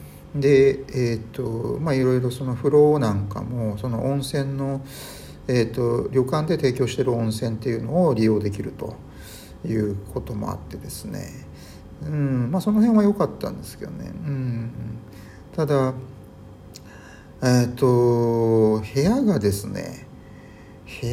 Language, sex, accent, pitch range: Japanese, male, native, 105-140 Hz